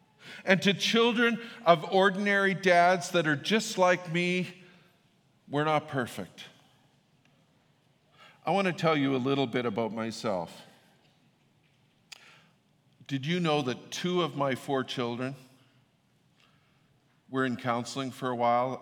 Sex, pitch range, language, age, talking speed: male, 135-180 Hz, English, 50-69, 125 wpm